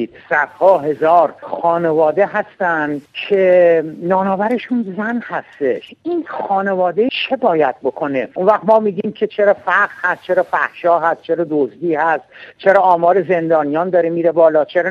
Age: 60-79